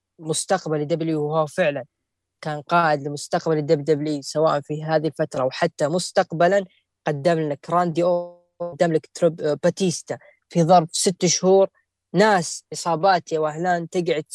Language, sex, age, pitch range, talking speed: Arabic, female, 10-29, 150-175 Hz, 125 wpm